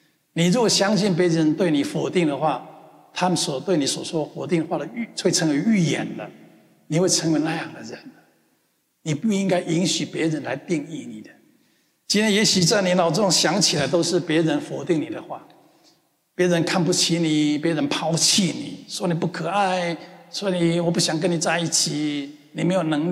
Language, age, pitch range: Chinese, 60-79, 155-180 Hz